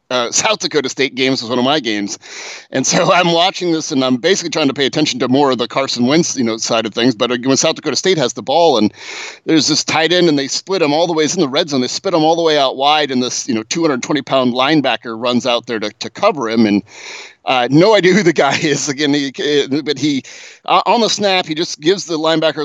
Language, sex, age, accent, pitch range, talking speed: English, male, 30-49, American, 130-170 Hz, 265 wpm